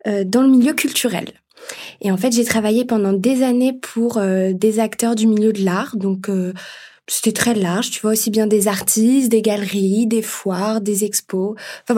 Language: French